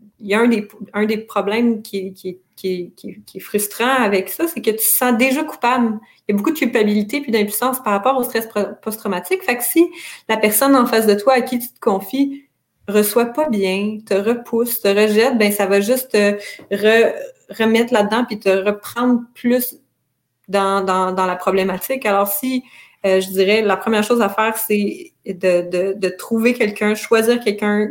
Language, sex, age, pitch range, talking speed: French, female, 30-49, 195-235 Hz, 205 wpm